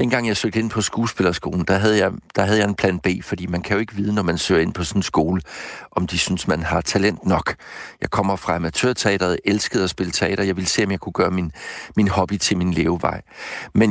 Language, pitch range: Danish, 90-110 Hz